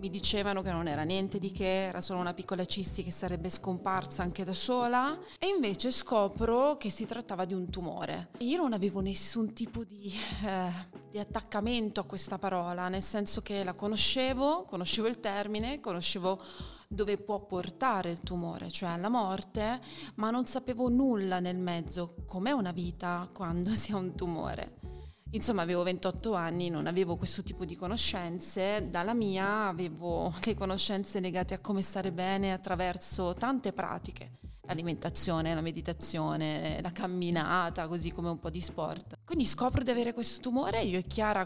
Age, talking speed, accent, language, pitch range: 30-49, 165 wpm, native, Italian, 180-220 Hz